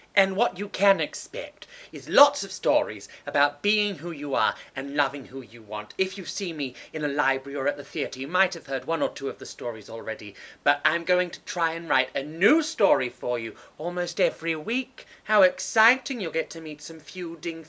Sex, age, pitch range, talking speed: male, 30-49, 140-195 Hz, 215 wpm